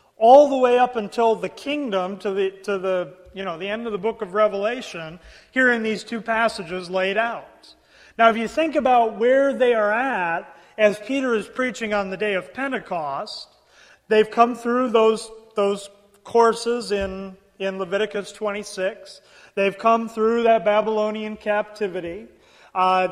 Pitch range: 195-230 Hz